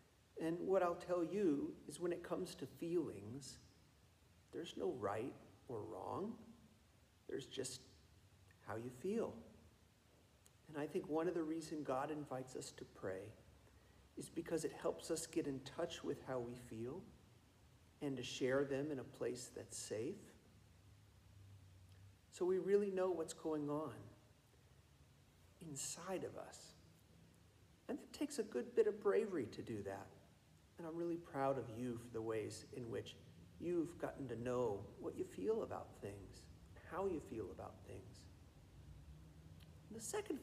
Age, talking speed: 50-69, 150 wpm